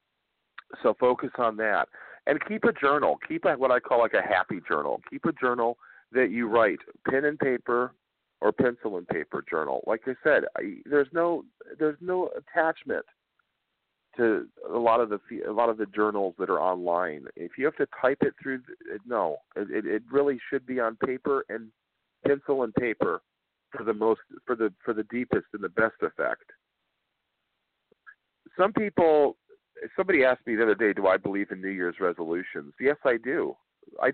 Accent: American